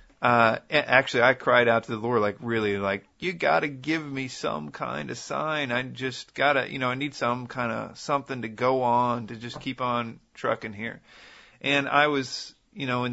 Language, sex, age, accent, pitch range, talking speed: English, male, 40-59, American, 110-130 Hz, 205 wpm